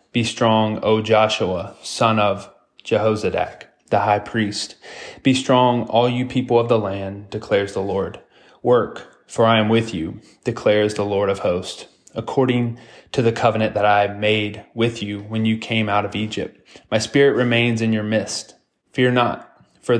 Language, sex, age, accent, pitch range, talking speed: English, male, 20-39, American, 105-120 Hz, 170 wpm